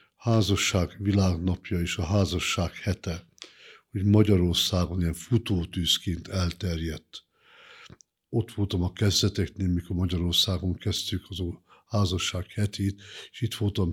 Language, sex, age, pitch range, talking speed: Hungarian, male, 50-69, 90-105 Hz, 110 wpm